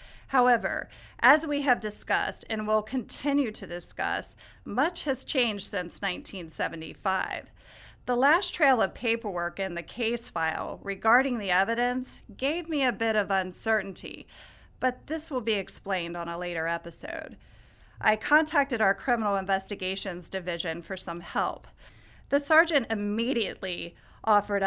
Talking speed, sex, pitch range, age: 135 wpm, female, 190-255 Hz, 40-59